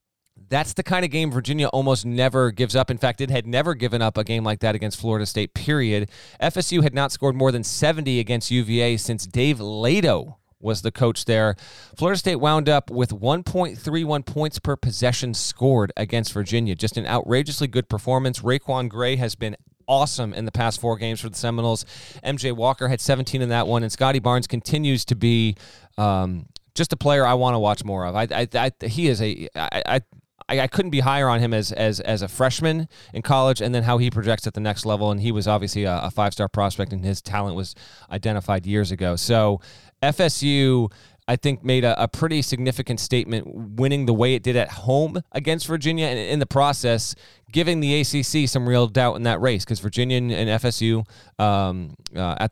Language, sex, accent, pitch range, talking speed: English, male, American, 105-130 Hz, 200 wpm